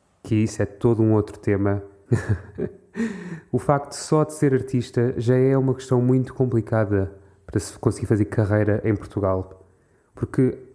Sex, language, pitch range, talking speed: male, Portuguese, 105-125 Hz, 150 wpm